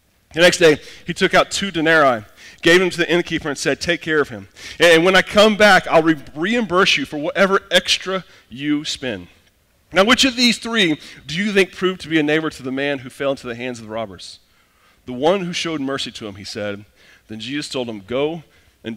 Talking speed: 225 wpm